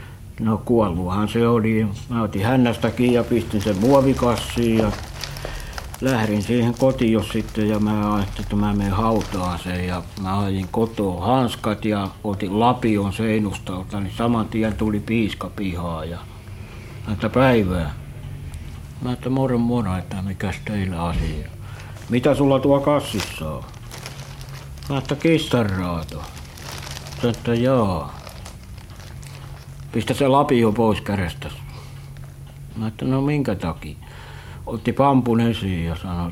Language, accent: Finnish, native